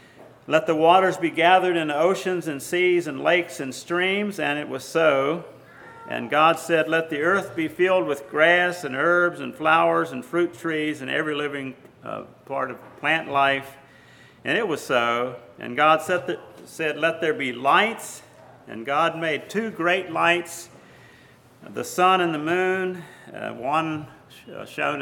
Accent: American